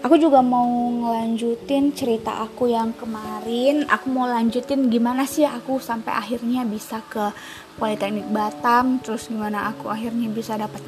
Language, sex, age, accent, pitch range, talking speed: Indonesian, female, 20-39, native, 210-240 Hz, 145 wpm